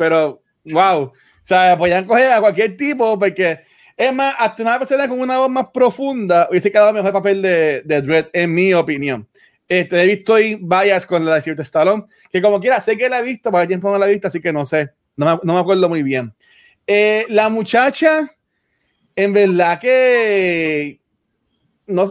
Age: 30-49